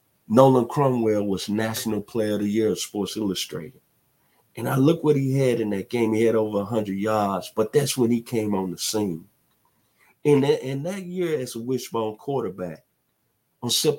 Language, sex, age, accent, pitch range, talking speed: English, male, 50-69, American, 100-130 Hz, 190 wpm